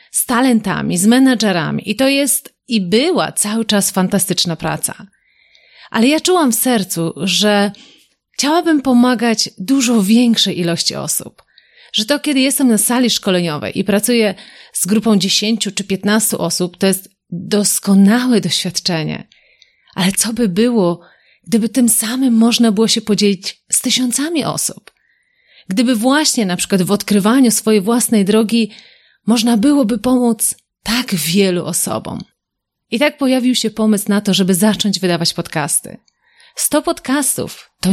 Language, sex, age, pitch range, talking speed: Polish, female, 30-49, 195-250 Hz, 140 wpm